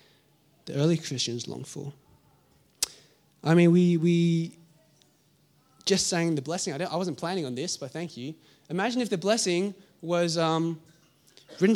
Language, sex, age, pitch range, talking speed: English, male, 20-39, 145-210 Hz, 155 wpm